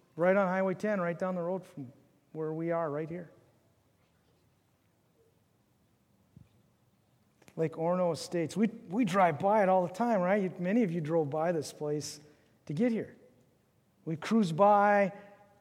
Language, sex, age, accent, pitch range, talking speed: English, male, 50-69, American, 160-205 Hz, 150 wpm